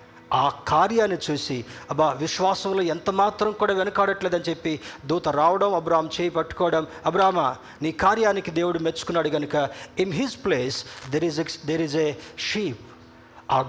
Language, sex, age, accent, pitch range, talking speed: Telugu, male, 50-69, native, 150-205 Hz, 135 wpm